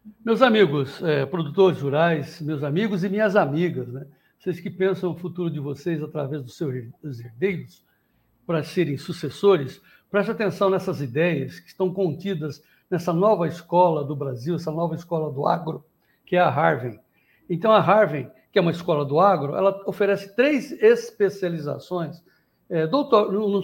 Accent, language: Brazilian, Portuguese